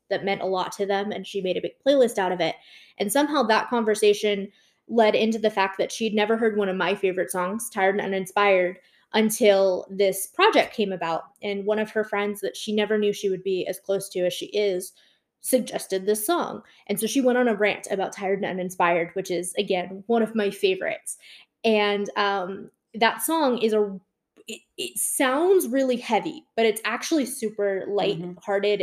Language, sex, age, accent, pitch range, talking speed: English, female, 20-39, American, 195-230 Hz, 200 wpm